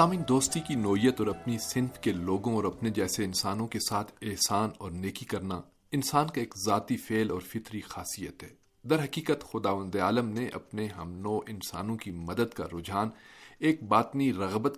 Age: 40-59